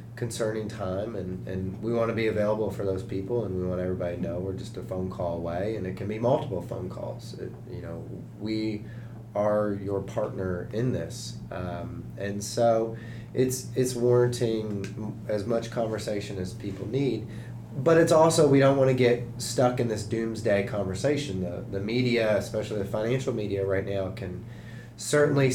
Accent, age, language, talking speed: American, 30-49, English, 180 wpm